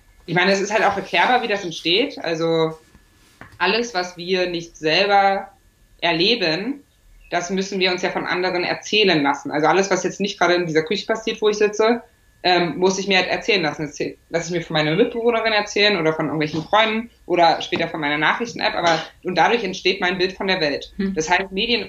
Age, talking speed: 20-39, 205 wpm